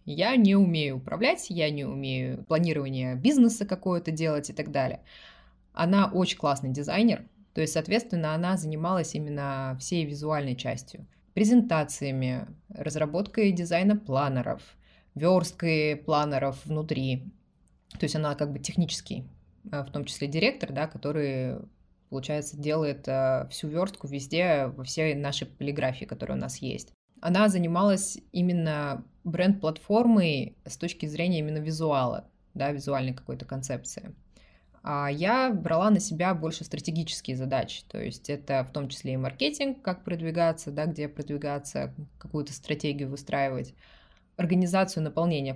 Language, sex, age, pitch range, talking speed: Russian, female, 20-39, 140-180 Hz, 125 wpm